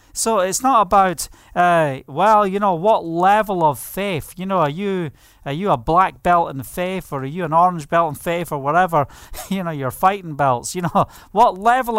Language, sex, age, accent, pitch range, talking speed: English, male, 40-59, British, 165-220 Hz, 210 wpm